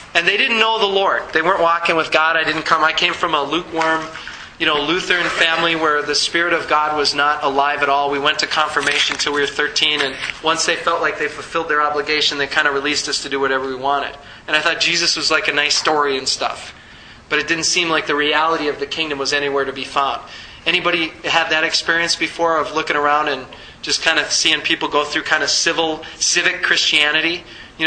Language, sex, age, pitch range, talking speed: English, male, 20-39, 140-160 Hz, 235 wpm